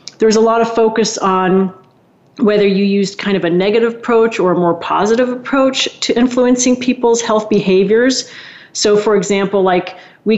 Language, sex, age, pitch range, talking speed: English, female, 40-59, 185-230 Hz, 170 wpm